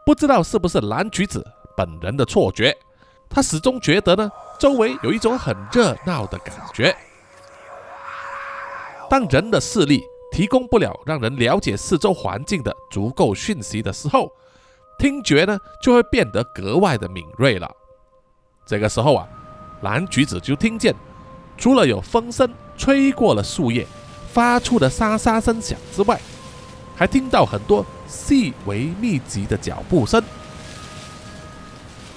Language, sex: Chinese, male